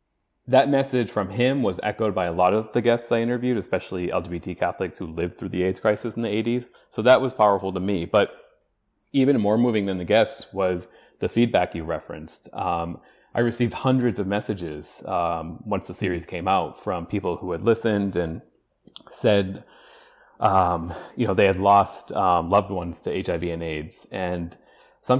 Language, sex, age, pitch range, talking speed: English, male, 30-49, 90-115 Hz, 185 wpm